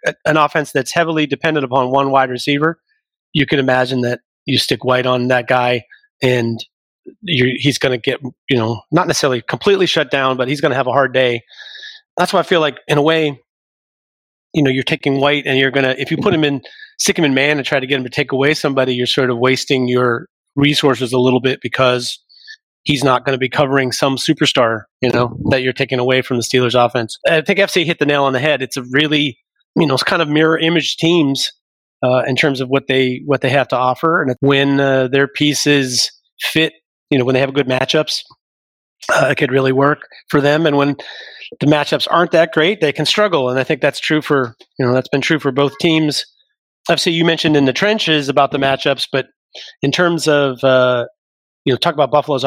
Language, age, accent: English, 30-49, American